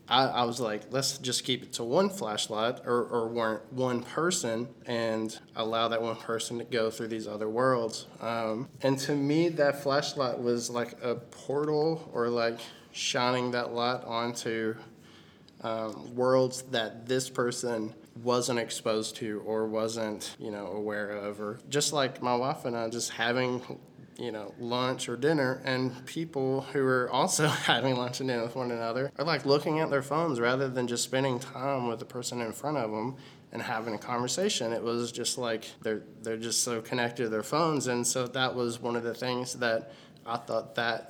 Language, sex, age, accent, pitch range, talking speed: English, male, 20-39, American, 115-135 Hz, 185 wpm